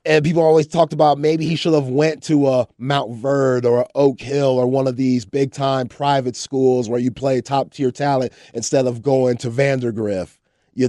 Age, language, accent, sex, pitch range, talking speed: 30-49, English, American, male, 130-170 Hz, 205 wpm